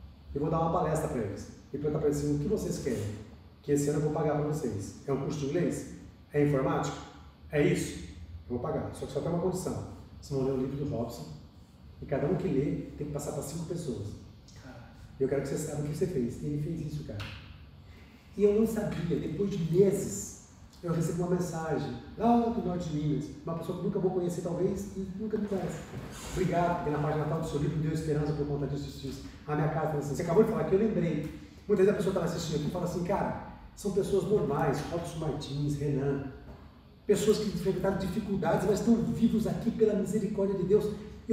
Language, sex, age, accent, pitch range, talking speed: Portuguese, male, 40-59, Brazilian, 145-205 Hz, 225 wpm